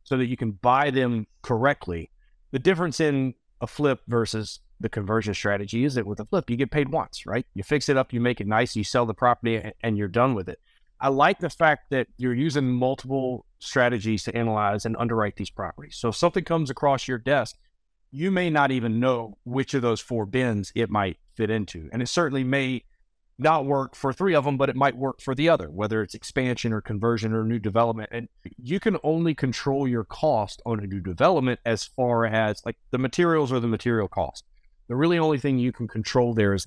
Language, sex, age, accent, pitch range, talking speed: English, male, 30-49, American, 110-135 Hz, 220 wpm